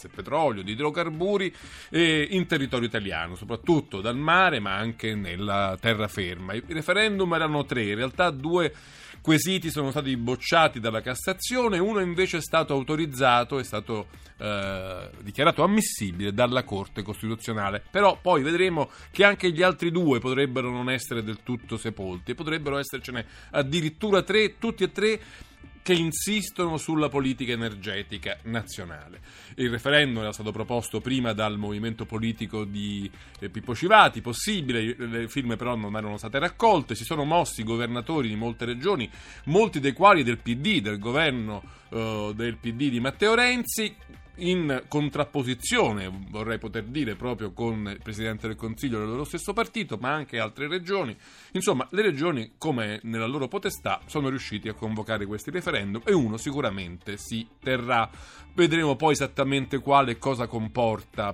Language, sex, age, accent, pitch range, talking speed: Italian, male, 40-59, native, 110-160 Hz, 145 wpm